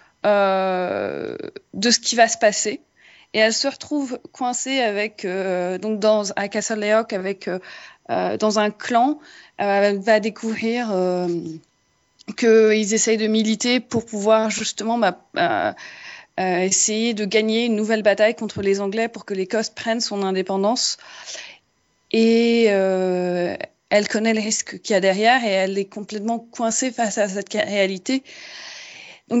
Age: 20-39